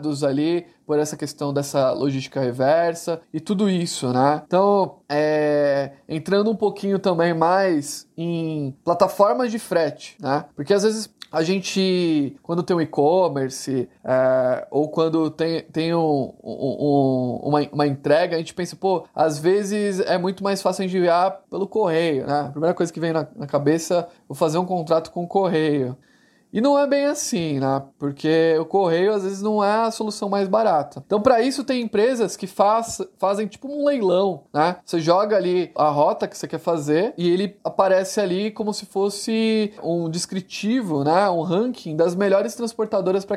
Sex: male